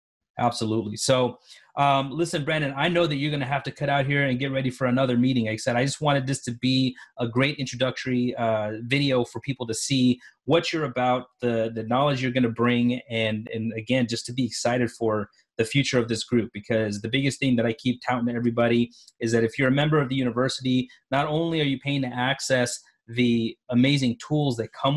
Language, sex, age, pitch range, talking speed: English, male, 30-49, 115-135 Hz, 225 wpm